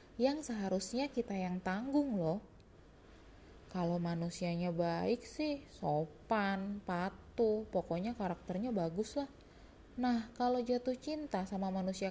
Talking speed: 110 wpm